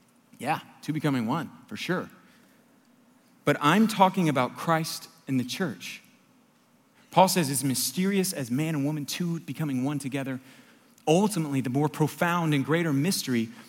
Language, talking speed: English, 145 wpm